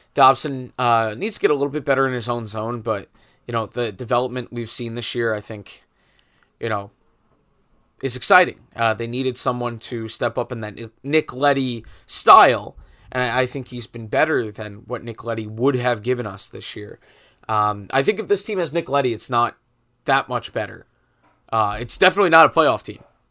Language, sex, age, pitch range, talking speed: English, male, 20-39, 110-140 Hz, 200 wpm